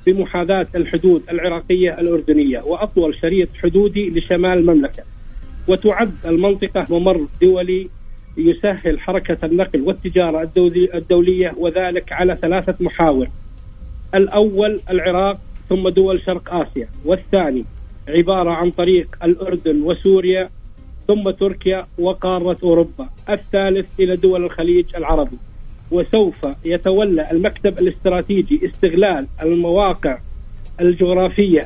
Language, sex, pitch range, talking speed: Arabic, male, 170-195 Hz, 95 wpm